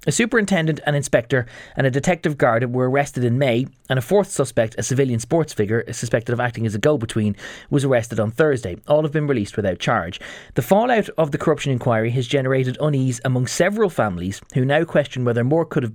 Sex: male